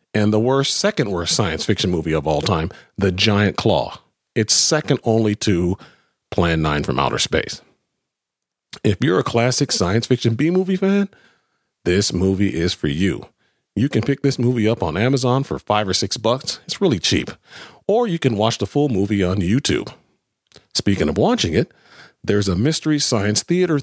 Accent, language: American, English